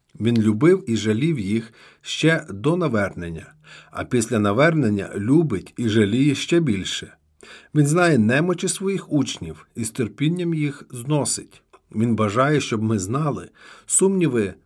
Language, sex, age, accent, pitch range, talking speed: Ukrainian, male, 50-69, native, 110-155 Hz, 130 wpm